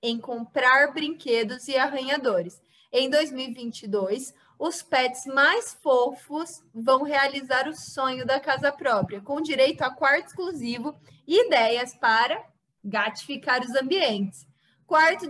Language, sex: Portuguese, female